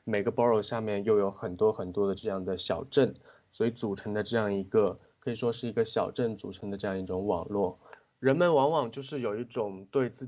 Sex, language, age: male, Chinese, 20-39